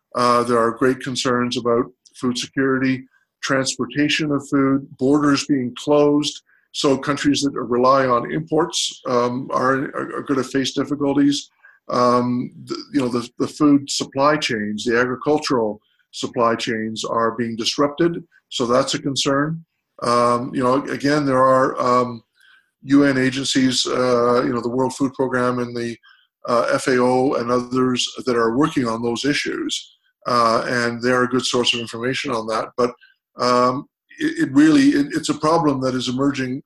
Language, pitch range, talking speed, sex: English, 125-150 Hz, 155 wpm, male